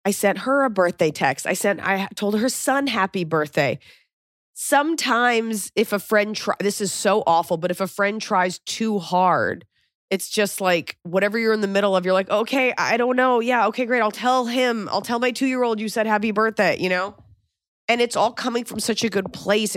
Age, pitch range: 30-49, 180-225 Hz